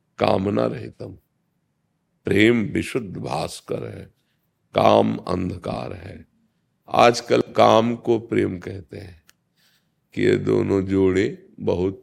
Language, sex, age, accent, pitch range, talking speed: Hindi, male, 50-69, native, 90-110 Hz, 105 wpm